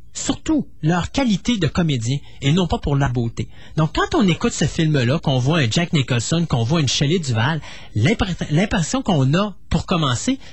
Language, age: French, 30-49